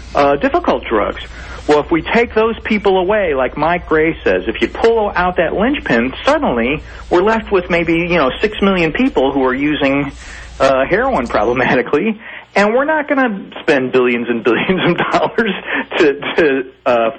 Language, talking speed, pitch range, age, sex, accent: English, 175 wpm, 145-205 Hz, 40-59, male, American